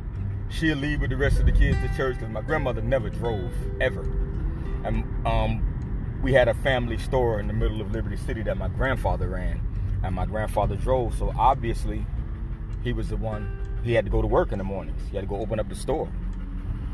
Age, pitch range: 30-49, 105-130 Hz